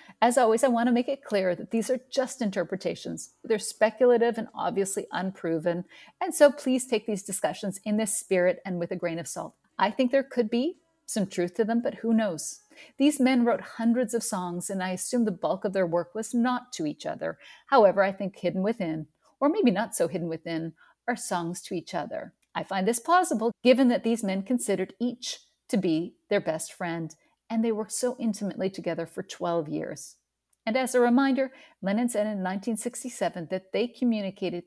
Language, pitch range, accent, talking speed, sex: English, 180-245 Hz, American, 200 wpm, female